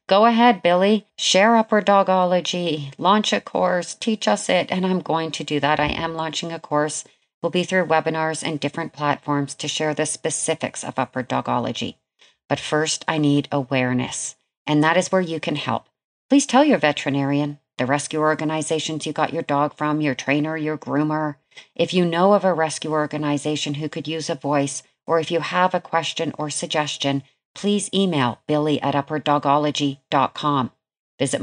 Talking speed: 175 wpm